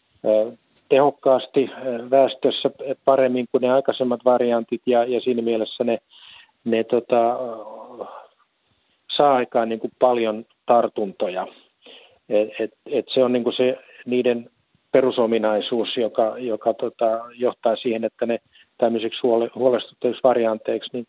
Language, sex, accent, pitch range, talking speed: Finnish, male, native, 110-125 Hz, 80 wpm